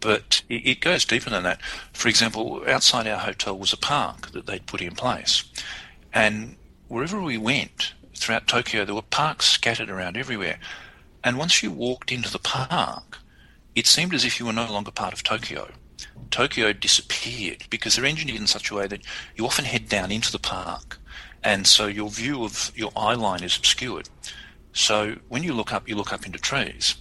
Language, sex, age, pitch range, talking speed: English, male, 40-59, 90-115 Hz, 190 wpm